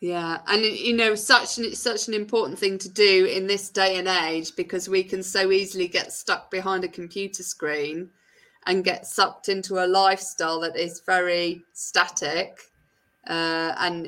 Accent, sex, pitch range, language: British, female, 175-220 Hz, English